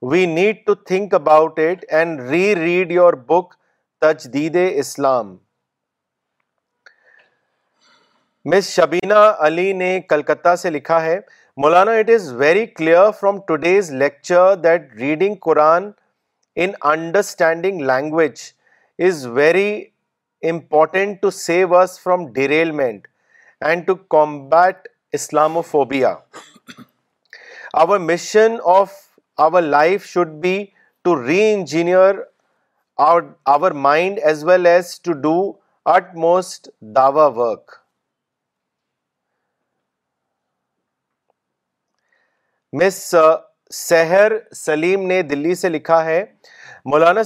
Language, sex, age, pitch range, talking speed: Urdu, male, 40-59, 155-195 Hz, 100 wpm